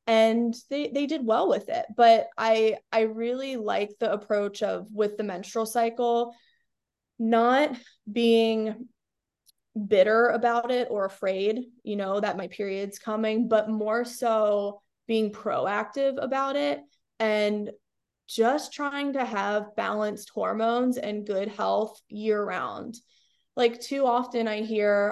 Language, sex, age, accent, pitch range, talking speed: English, female, 20-39, American, 215-250 Hz, 130 wpm